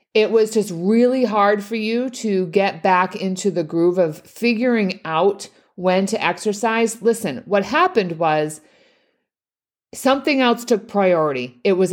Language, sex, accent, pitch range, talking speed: English, female, American, 175-230 Hz, 145 wpm